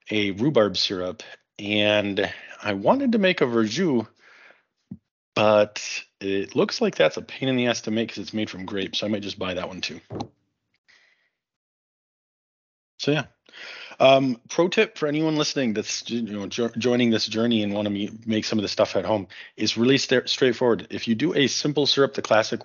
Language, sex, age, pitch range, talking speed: English, male, 30-49, 105-140 Hz, 195 wpm